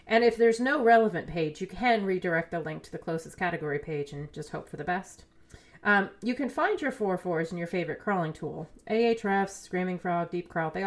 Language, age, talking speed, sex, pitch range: English, 30-49, 215 wpm, female, 160-205 Hz